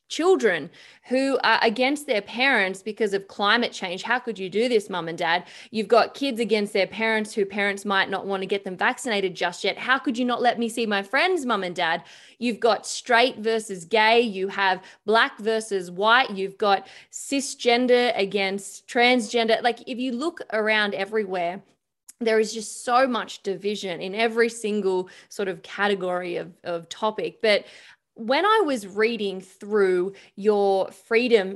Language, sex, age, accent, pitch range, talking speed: English, female, 20-39, Australian, 195-230 Hz, 175 wpm